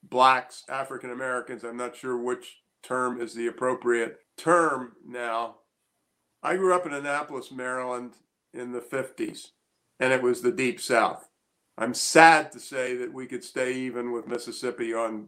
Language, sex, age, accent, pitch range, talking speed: English, male, 50-69, American, 120-155 Hz, 155 wpm